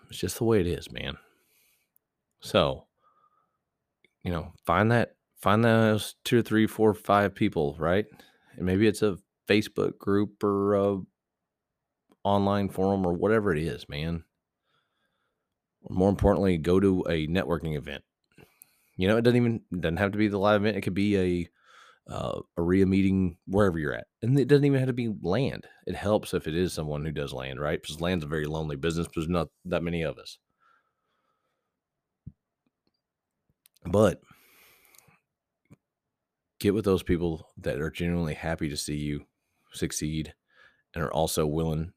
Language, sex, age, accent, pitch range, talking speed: English, male, 30-49, American, 80-100 Hz, 165 wpm